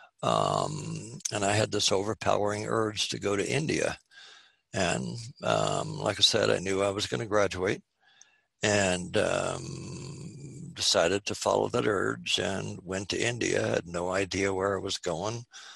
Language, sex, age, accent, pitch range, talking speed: English, male, 60-79, American, 90-105 Hz, 160 wpm